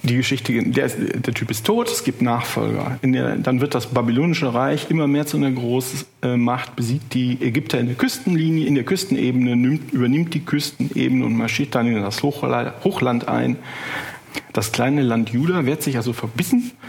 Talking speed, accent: 185 wpm, German